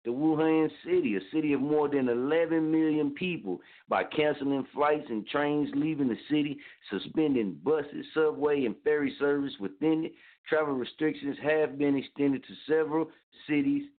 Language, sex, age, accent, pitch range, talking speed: English, male, 60-79, American, 110-145 Hz, 150 wpm